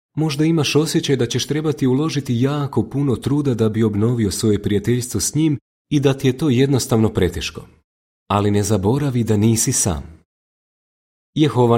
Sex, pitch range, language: male, 100-140 Hz, Croatian